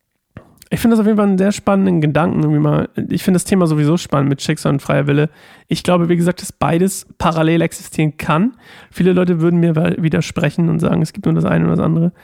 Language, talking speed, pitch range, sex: German, 230 wpm, 155-190 Hz, male